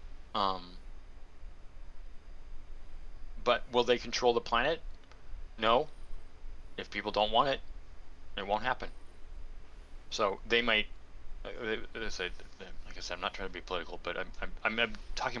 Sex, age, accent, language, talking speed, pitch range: male, 30-49, American, English, 150 wpm, 65-100 Hz